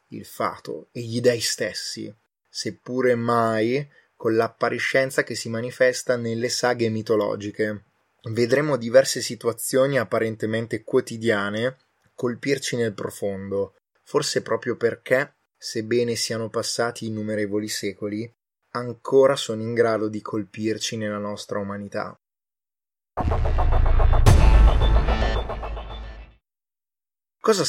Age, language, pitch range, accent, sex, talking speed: 20-39, Italian, 105-125 Hz, native, male, 90 wpm